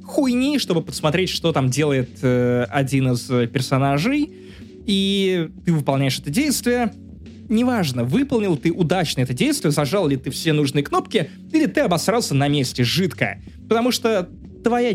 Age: 20-39